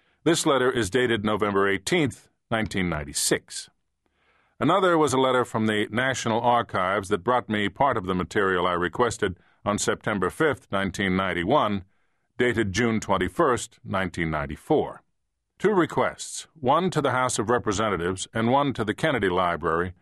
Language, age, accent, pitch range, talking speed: English, 50-69, American, 95-120 Hz, 140 wpm